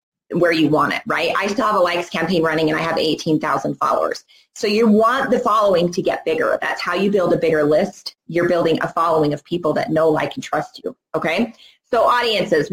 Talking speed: 220 wpm